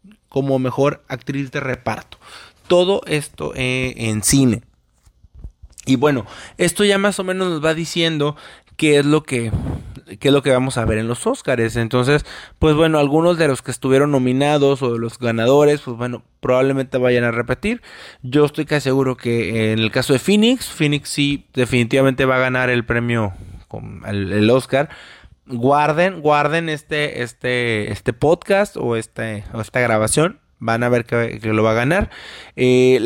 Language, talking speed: Spanish, 170 wpm